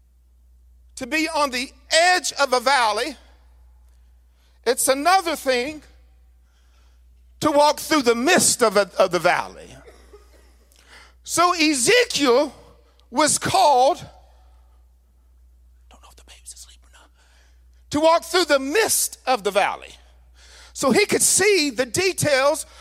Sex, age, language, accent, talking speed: male, 50-69, English, American, 125 wpm